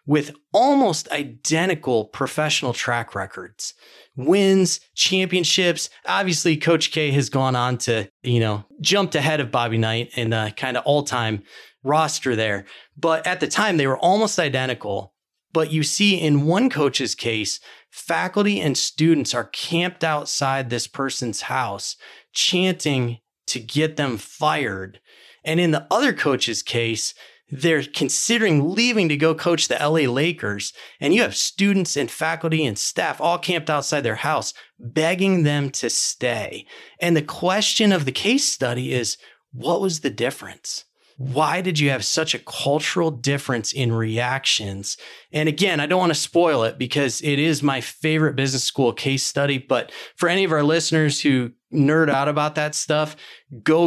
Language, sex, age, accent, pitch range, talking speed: English, male, 30-49, American, 125-160 Hz, 160 wpm